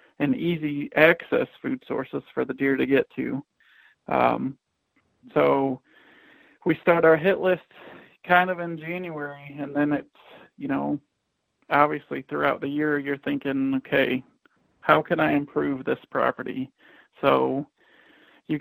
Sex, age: male, 40-59